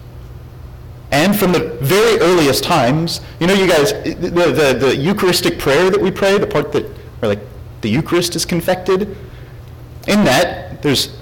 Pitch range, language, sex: 120-175 Hz, English, male